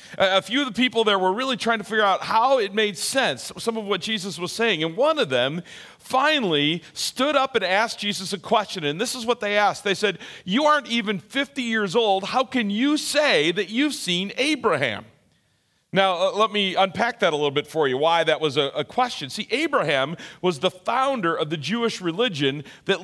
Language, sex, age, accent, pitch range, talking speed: English, male, 40-59, American, 185-250 Hz, 210 wpm